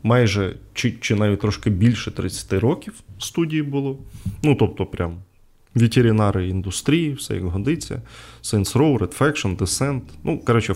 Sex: male